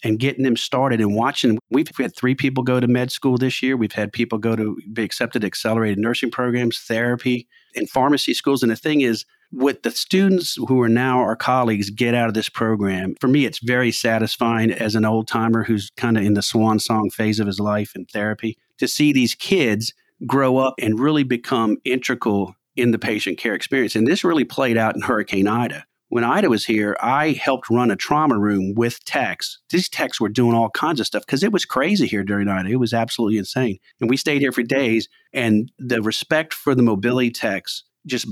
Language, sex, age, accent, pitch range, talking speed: English, male, 40-59, American, 110-125 Hz, 215 wpm